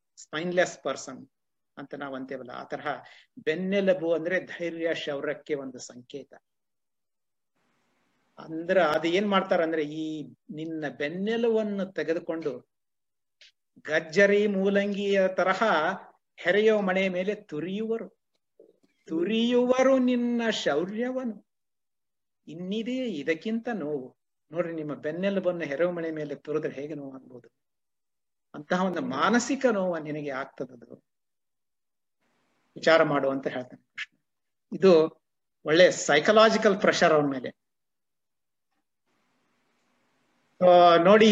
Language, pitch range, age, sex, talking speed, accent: Kannada, 155-195 Hz, 60-79, male, 85 wpm, native